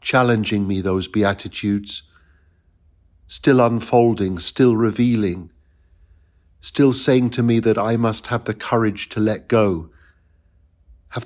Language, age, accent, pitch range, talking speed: English, 50-69, British, 85-115 Hz, 115 wpm